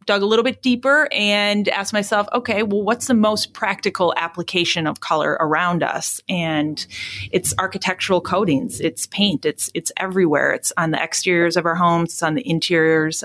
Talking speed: 175 wpm